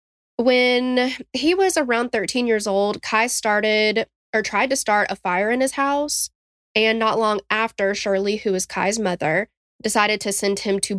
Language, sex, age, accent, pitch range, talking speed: English, female, 10-29, American, 195-245 Hz, 175 wpm